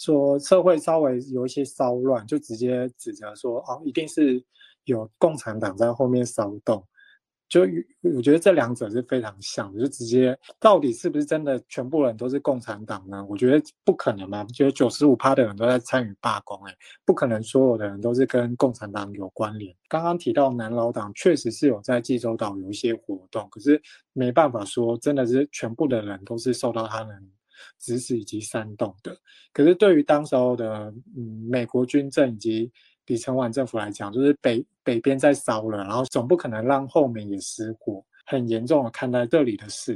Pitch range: 115-145 Hz